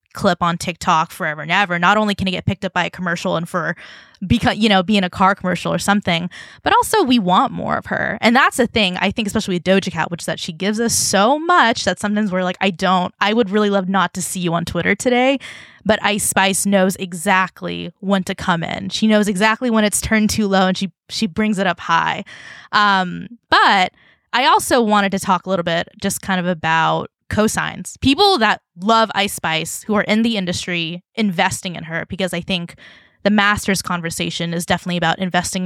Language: English